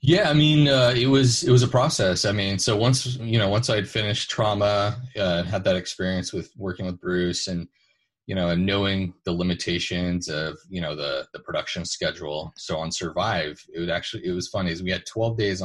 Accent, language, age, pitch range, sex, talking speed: American, English, 30-49, 85-110 Hz, male, 220 wpm